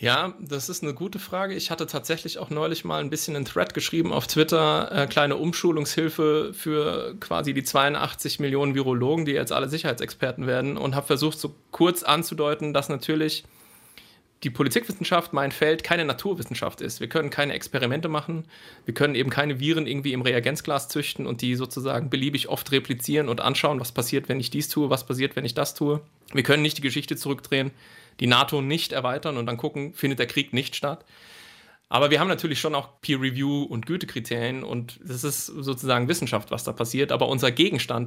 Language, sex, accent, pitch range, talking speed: German, male, German, 130-155 Hz, 190 wpm